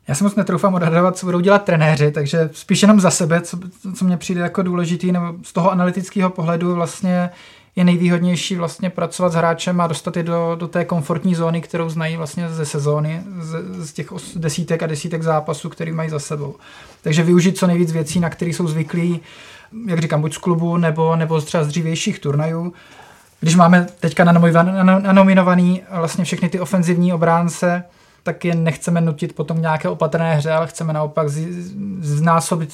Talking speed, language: 180 wpm, Czech